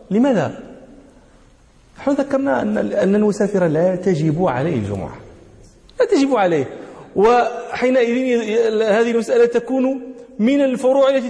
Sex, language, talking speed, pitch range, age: male, English, 100 wpm, 150-230 Hz, 40-59